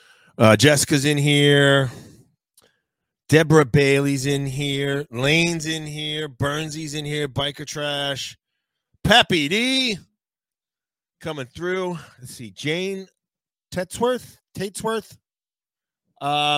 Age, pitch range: 30-49, 110-155 Hz